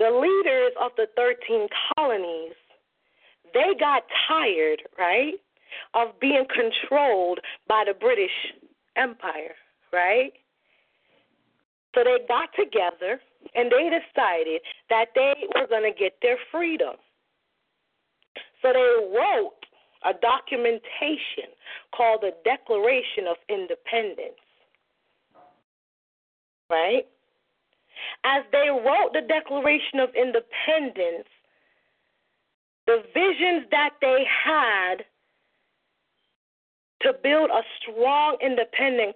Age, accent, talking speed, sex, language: 40-59, American, 95 wpm, female, English